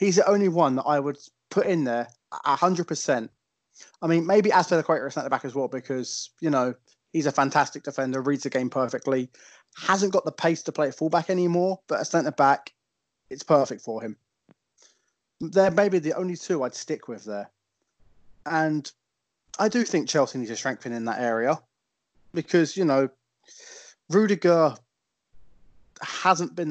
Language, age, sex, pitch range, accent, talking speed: English, 20-39, male, 130-170 Hz, British, 175 wpm